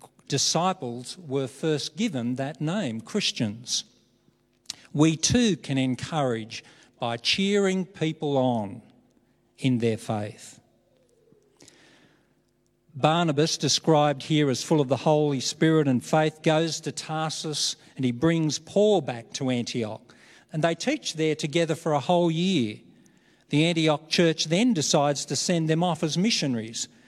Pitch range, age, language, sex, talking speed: 125-160 Hz, 50-69, English, male, 130 wpm